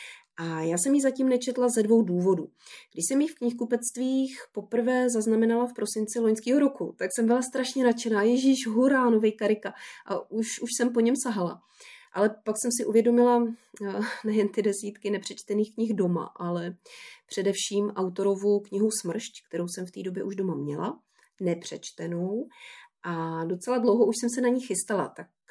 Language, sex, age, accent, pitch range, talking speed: Czech, female, 30-49, native, 190-240 Hz, 165 wpm